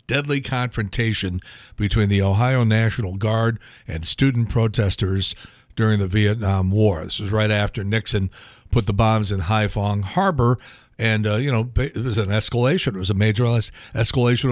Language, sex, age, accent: English, male, 60-79, American